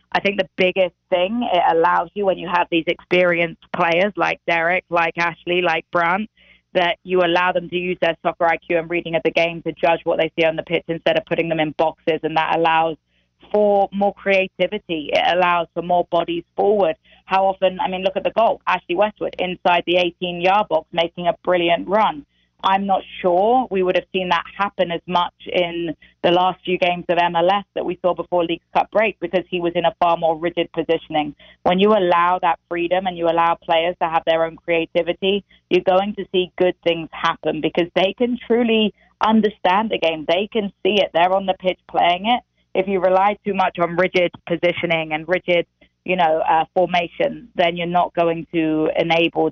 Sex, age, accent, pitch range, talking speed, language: female, 20-39, British, 165-185 Hz, 205 wpm, English